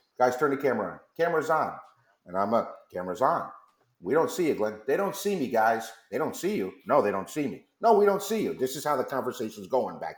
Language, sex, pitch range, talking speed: English, male, 110-155 Hz, 255 wpm